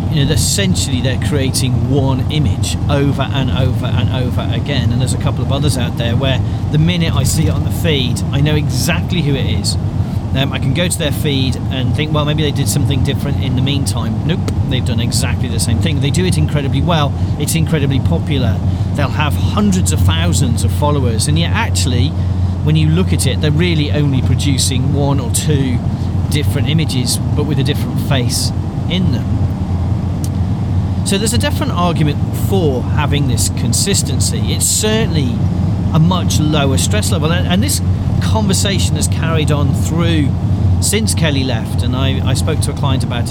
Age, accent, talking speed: 40-59, British, 185 wpm